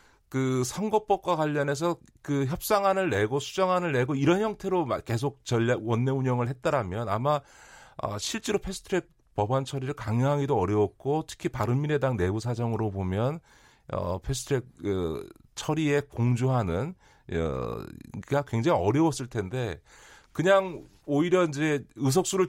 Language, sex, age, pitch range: Korean, male, 40-59, 110-150 Hz